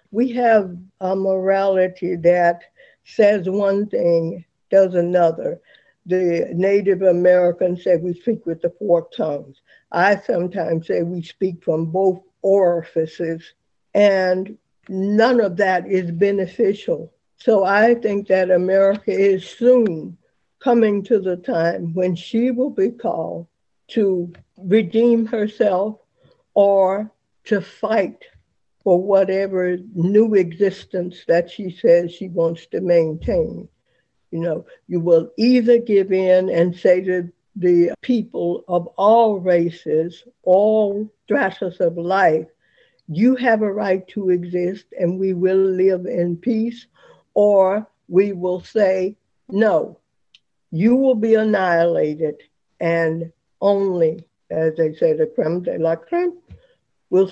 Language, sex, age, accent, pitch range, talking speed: English, female, 60-79, American, 175-210 Hz, 125 wpm